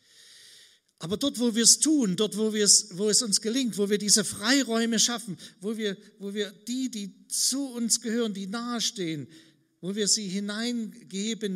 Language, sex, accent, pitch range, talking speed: German, male, German, 130-205 Hz, 165 wpm